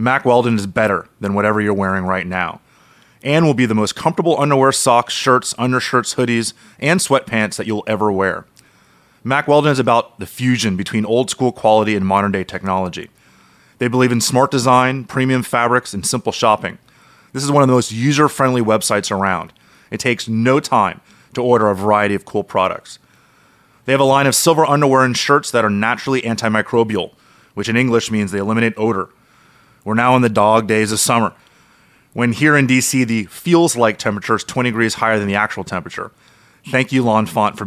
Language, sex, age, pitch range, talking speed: English, male, 30-49, 110-130 Hz, 185 wpm